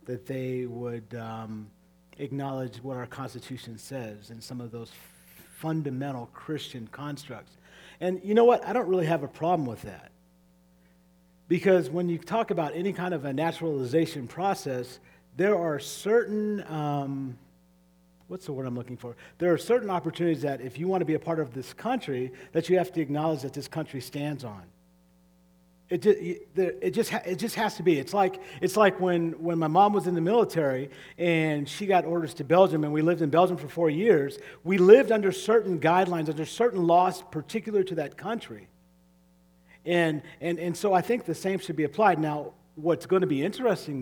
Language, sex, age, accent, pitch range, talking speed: English, male, 50-69, American, 125-180 Hz, 190 wpm